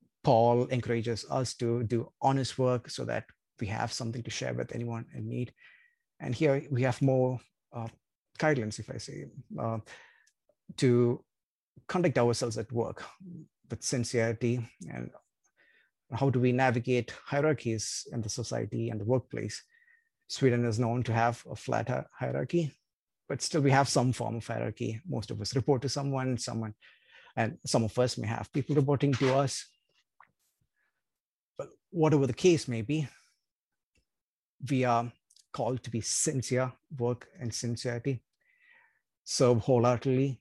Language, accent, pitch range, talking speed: English, Indian, 115-140 Hz, 145 wpm